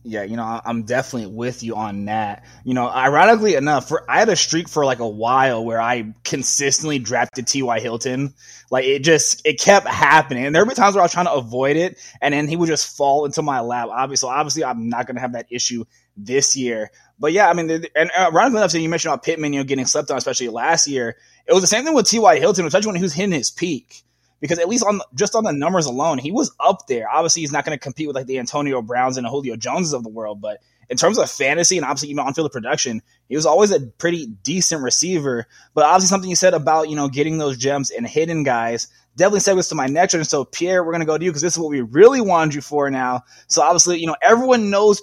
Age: 20-39